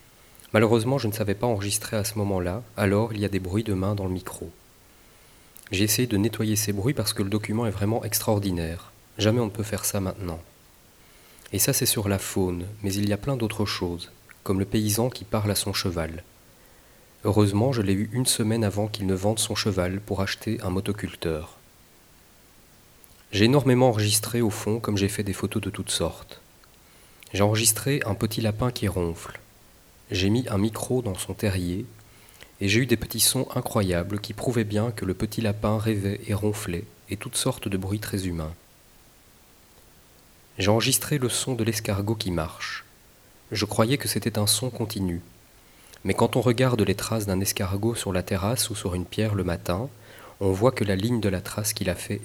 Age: 40-59